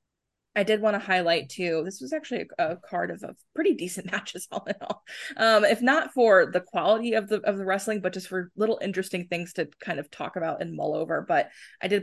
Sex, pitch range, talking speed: female, 170-200 Hz, 240 wpm